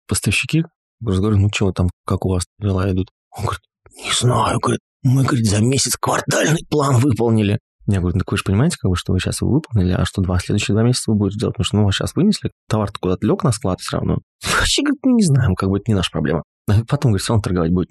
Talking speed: 250 wpm